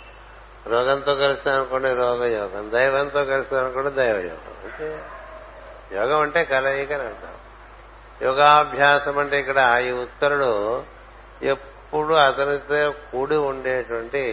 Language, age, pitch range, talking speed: Telugu, 60-79, 125-145 Hz, 85 wpm